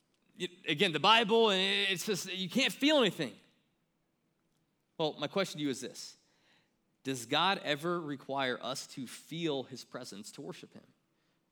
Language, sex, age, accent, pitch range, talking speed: English, male, 20-39, American, 150-205 Hz, 150 wpm